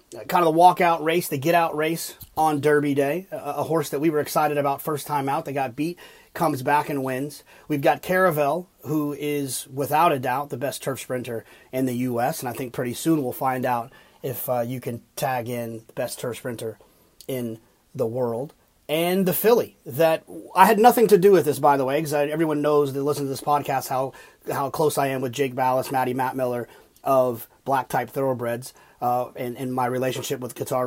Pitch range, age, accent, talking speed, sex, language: 125-155 Hz, 30-49, American, 210 wpm, male, English